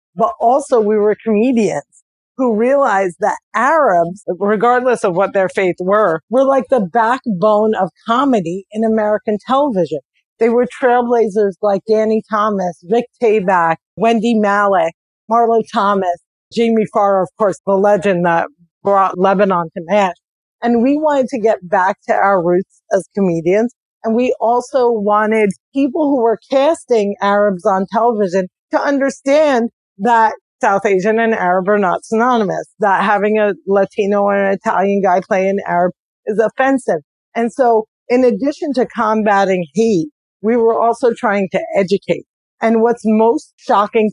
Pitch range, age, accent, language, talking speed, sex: 190-230 Hz, 40-59, American, English, 150 wpm, female